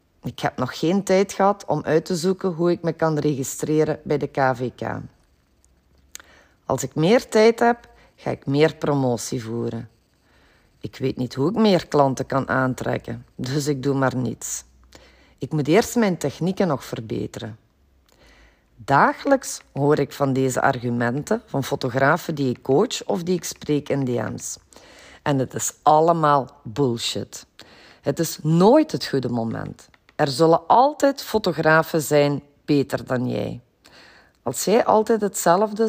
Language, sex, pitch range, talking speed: Dutch, female, 125-175 Hz, 150 wpm